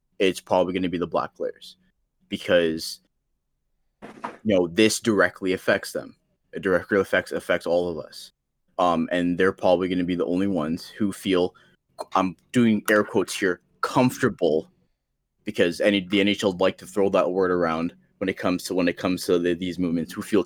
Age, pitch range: 20-39, 90-105 Hz